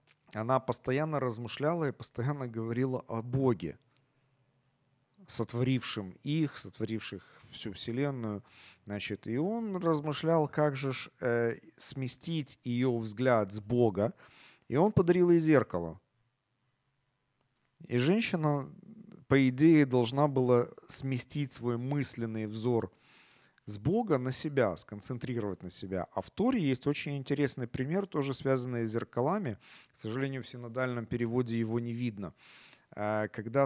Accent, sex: native, male